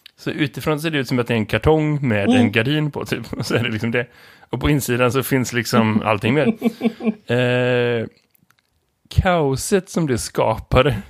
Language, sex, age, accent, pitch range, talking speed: Swedish, male, 20-39, native, 115-145 Hz, 190 wpm